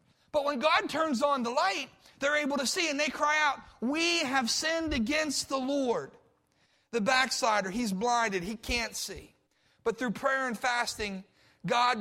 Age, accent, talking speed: 40-59, American, 170 wpm